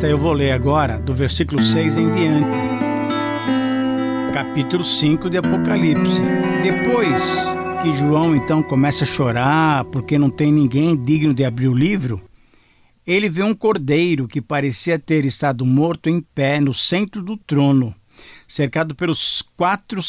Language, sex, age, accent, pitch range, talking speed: Portuguese, male, 60-79, Brazilian, 135-175 Hz, 140 wpm